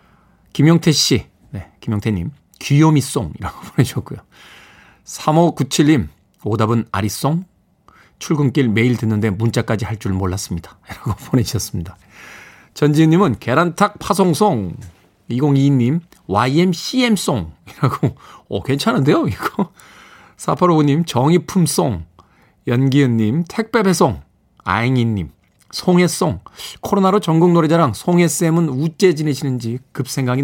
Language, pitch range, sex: Korean, 110-165 Hz, male